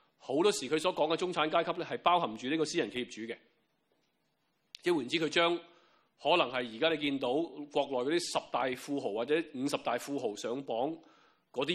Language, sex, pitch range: Chinese, male, 130-170 Hz